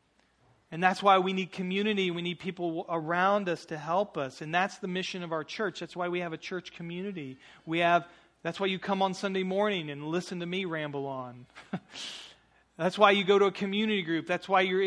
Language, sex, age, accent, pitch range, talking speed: English, male, 40-59, American, 160-190 Hz, 220 wpm